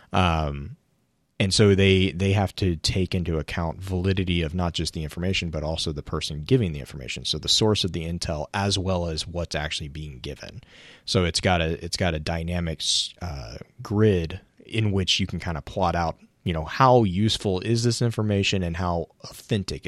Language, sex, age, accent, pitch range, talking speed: English, male, 30-49, American, 80-100 Hz, 195 wpm